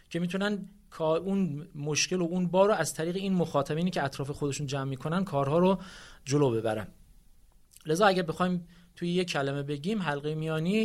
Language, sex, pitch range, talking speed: Persian, male, 145-190 Hz, 165 wpm